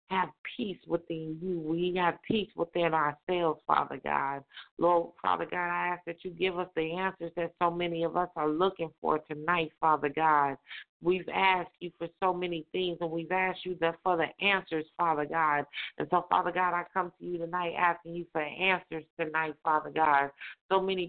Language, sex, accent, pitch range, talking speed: English, female, American, 160-180 Hz, 190 wpm